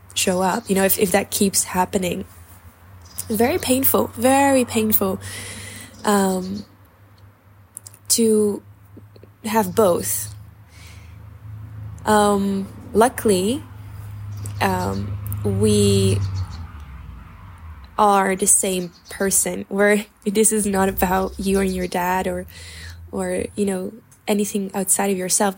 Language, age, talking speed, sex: English, 10-29, 100 wpm, female